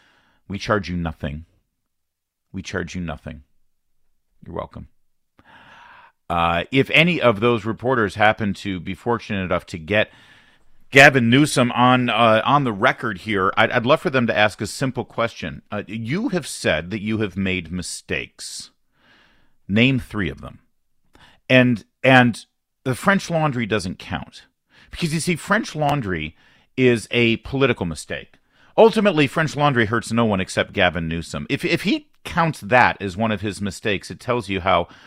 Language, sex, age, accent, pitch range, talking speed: English, male, 40-59, American, 95-140 Hz, 160 wpm